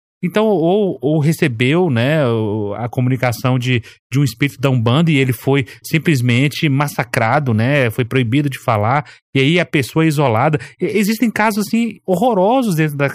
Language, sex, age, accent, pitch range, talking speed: Portuguese, male, 30-49, Brazilian, 135-195 Hz, 150 wpm